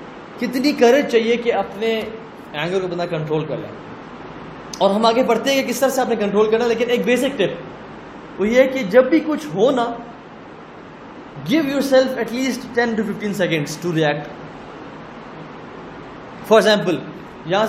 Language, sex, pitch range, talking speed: Urdu, male, 200-255 Hz, 165 wpm